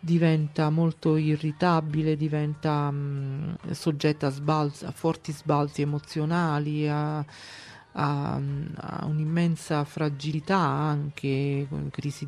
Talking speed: 100 wpm